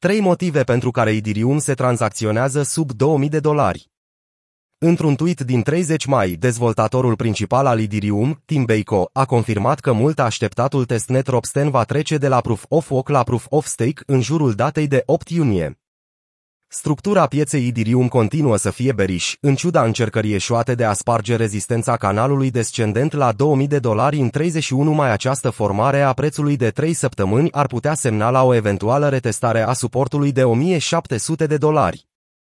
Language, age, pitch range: Romanian, 30-49, 115-150 Hz